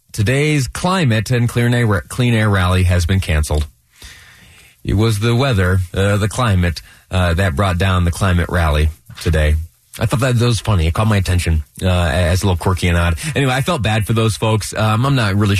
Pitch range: 90-110 Hz